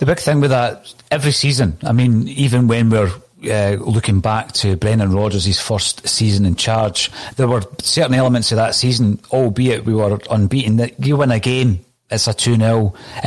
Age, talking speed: 40-59, 185 wpm